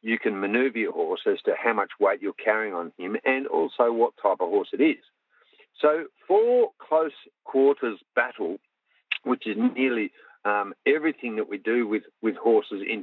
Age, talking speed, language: 50-69, 180 wpm, English